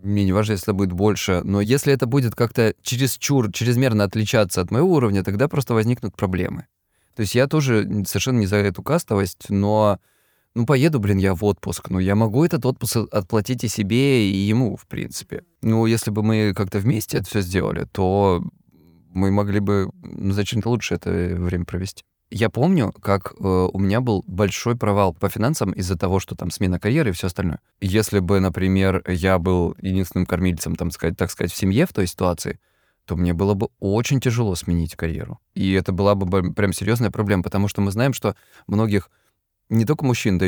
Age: 20-39